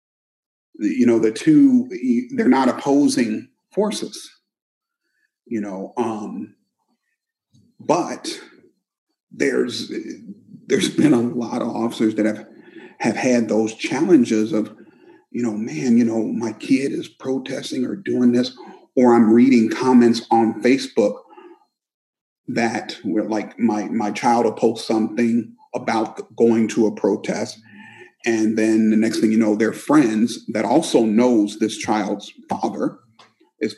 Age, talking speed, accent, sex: 40-59, 130 wpm, American, male